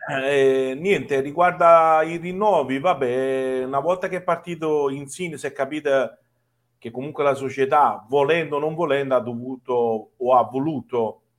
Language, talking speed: Italian, 155 wpm